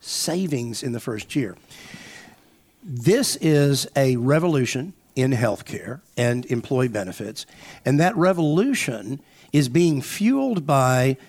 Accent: American